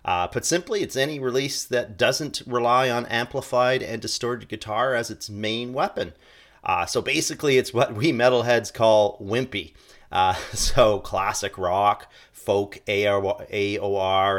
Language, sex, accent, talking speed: English, male, American, 140 wpm